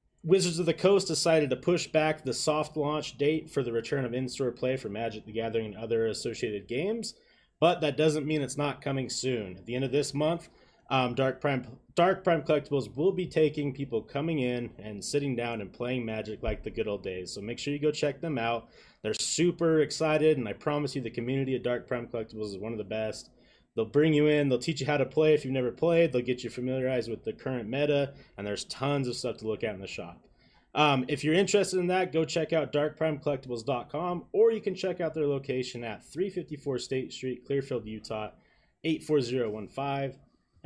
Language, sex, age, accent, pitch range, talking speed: English, male, 30-49, American, 120-155 Hz, 215 wpm